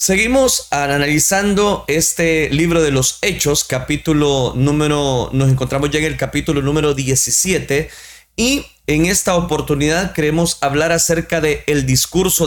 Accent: Mexican